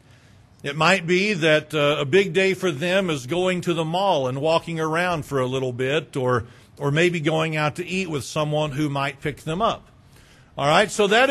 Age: 50-69